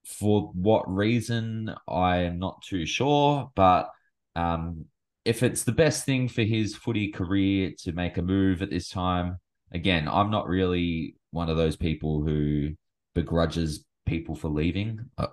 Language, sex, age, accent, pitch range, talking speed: English, male, 20-39, Australian, 80-110 Hz, 155 wpm